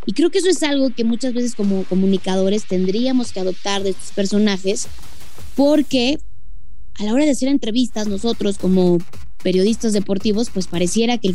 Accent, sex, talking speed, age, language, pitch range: Mexican, female, 170 wpm, 20-39, Spanish, 205-295 Hz